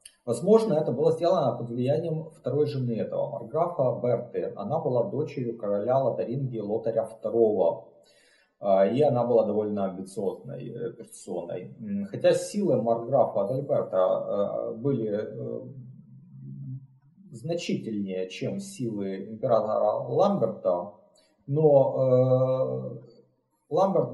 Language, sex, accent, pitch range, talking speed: Russian, male, native, 105-140 Hz, 90 wpm